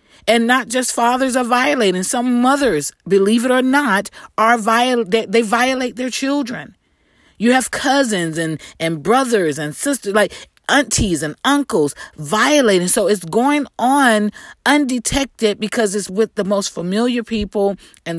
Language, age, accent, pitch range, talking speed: English, 40-59, American, 165-230 Hz, 150 wpm